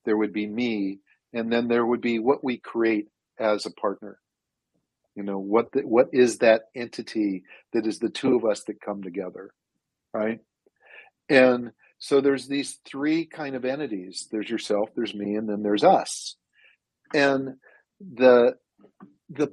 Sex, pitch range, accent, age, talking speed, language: male, 110-140 Hz, American, 50-69, 160 wpm, English